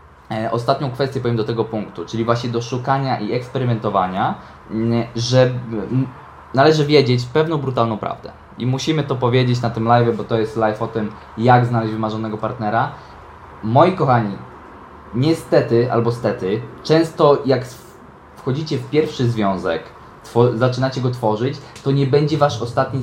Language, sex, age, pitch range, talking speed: Polish, male, 20-39, 115-140 Hz, 140 wpm